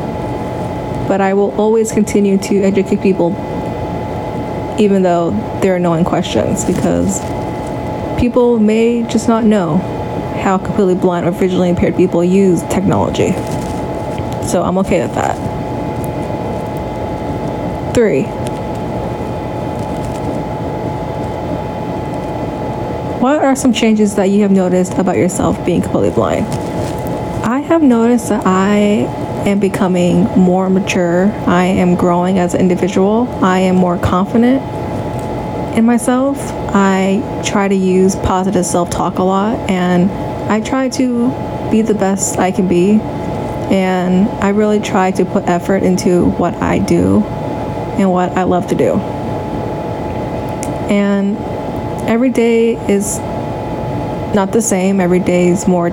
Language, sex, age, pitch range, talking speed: English, female, 20-39, 180-215 Hz, 125 wpm